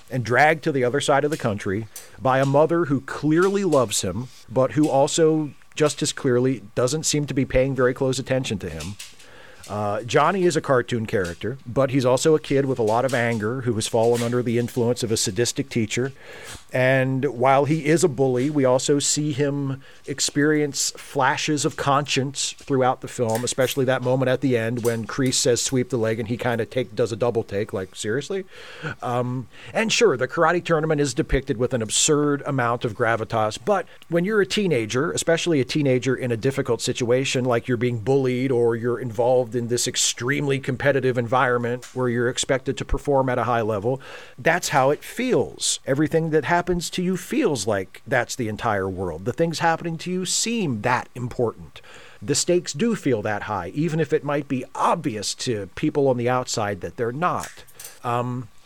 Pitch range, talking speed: 120-150 Hz, 190 wpm